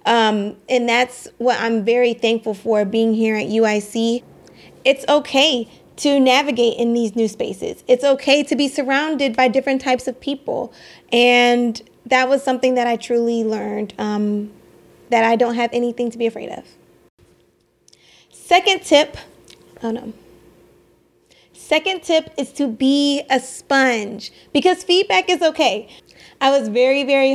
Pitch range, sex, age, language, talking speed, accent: 235-285 Hz, female, 20-39, English, 145 wpm, American